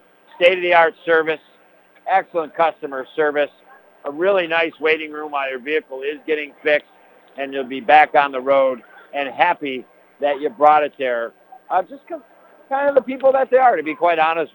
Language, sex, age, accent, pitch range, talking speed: English, male, 60-79, American, 150-190 Hz, 175 wpm